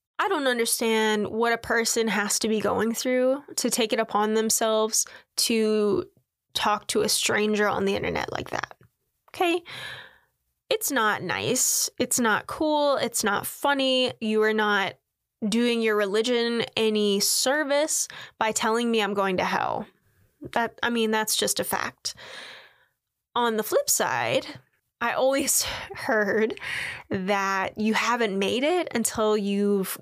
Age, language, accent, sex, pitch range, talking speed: 10-29, English, American, female, 210-255 Hz, 145 wpm